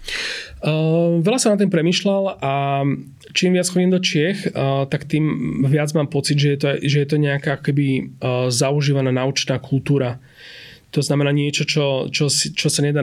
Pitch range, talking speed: 130-150 Hz, 175 wpm